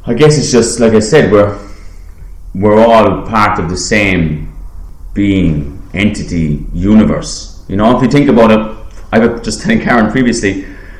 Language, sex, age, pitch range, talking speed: English, male, 30-49, 80-115 Hz, 165 wpm